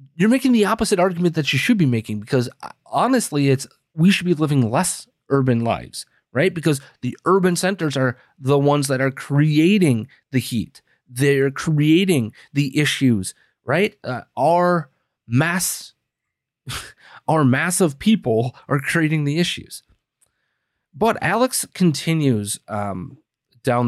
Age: 30-49